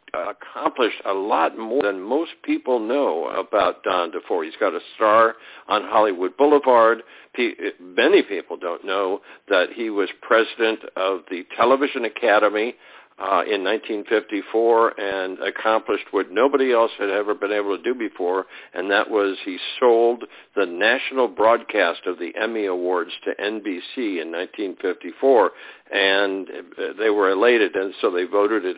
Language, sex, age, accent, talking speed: English, male, 60-79, American, 150 wpm